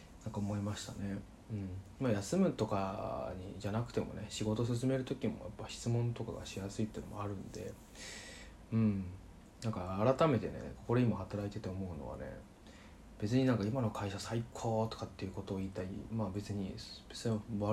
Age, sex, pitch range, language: 20-39, male, 100-115 Hz, Japanese